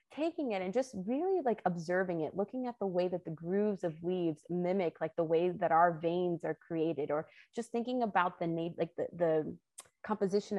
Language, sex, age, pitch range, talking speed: English, female, 20-39, 170-210 Hz, 205 wpm